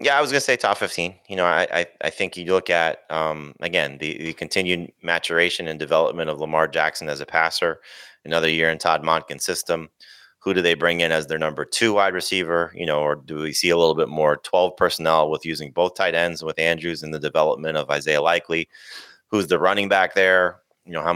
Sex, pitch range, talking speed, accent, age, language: male, 80-90 Hz, 225 wpm, American, 30-49, English